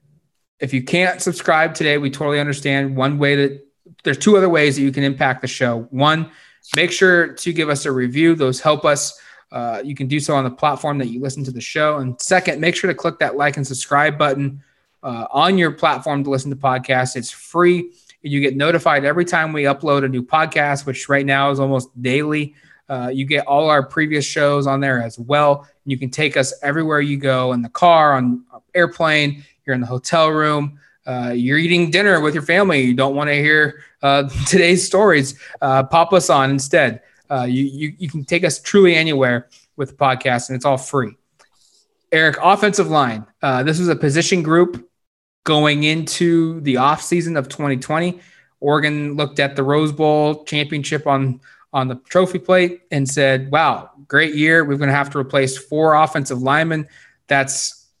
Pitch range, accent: 135-160 Hz, American